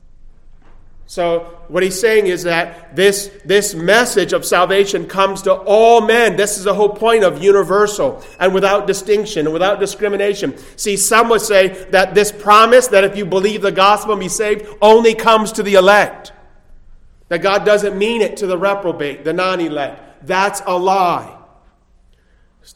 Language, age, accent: English, 40-59, American